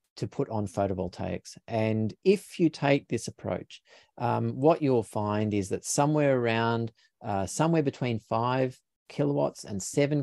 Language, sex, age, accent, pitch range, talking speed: English, male, 40-59, Australian, 95-120 Hz, 145 wpm